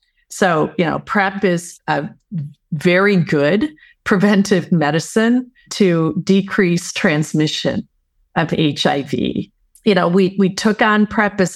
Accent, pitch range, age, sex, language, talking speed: American, 170-215 Hz, 40-59, female, English, 120 wpm